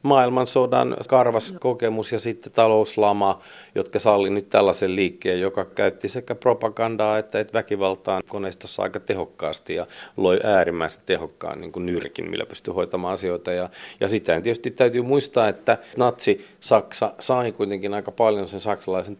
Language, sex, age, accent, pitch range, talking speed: Finnish, male, 40-59, native, 95-120 Hz, 140 wpm